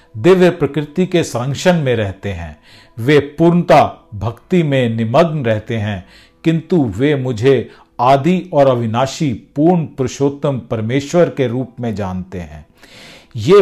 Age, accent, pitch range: 50-69, native, 115-165 Hz